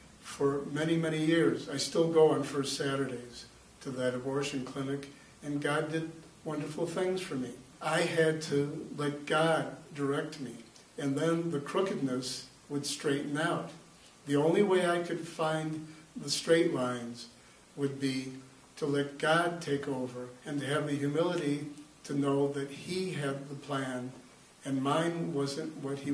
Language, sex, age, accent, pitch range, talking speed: English, male, 60-79, American, 140-160 Hz, 155 wpm